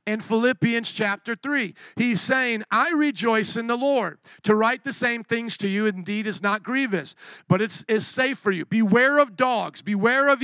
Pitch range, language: 195-240 Hz, English